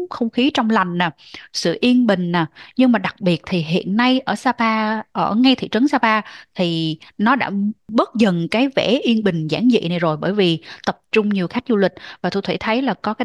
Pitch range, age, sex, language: 185-250 Hz, 20-39, female, Vietnamese